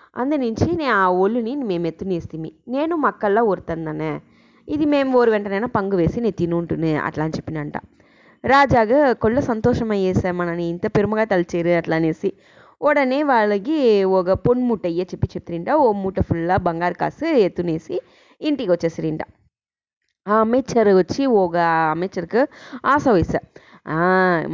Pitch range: 175-230 Hz